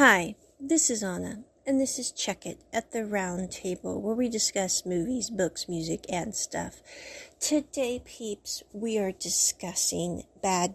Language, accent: English, American